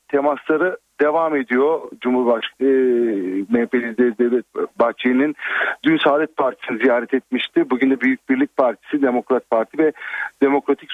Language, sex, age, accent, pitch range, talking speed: Turkish, male, 50-69, native, 115-140 Hz, 120 wpm